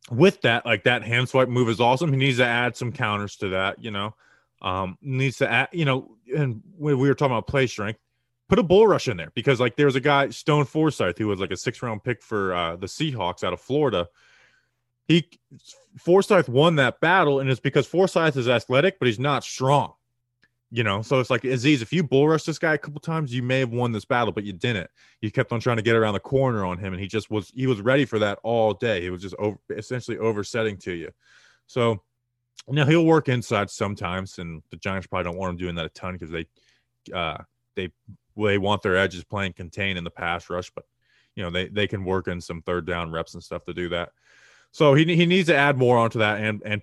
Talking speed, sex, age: 240 wpm, male, 20-39